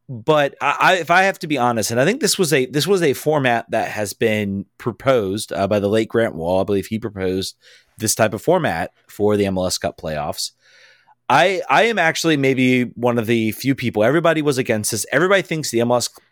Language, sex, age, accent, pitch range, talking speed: English, male, 30-49, American, 105-140 Hz, 215 wpm